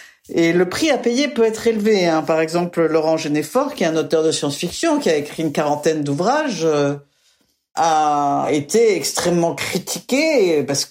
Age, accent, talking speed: 50-69, French, 165 wpm